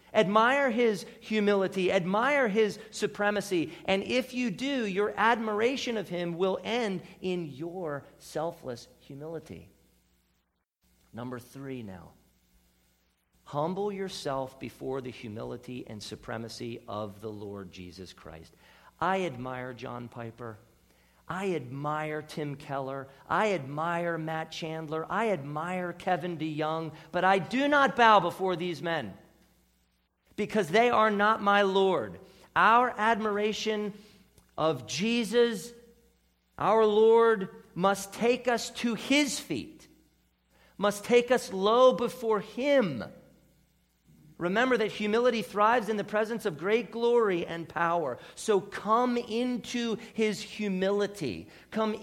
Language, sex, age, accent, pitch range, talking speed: English, male, 40-59, American, 140-220 Hz, 120 wpm